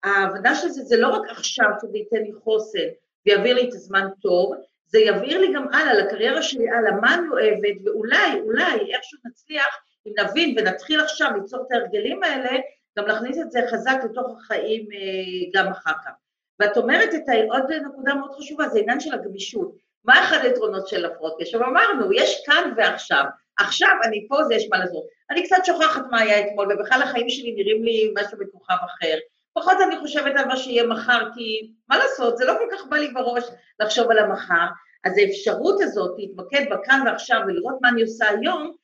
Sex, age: female, 40-59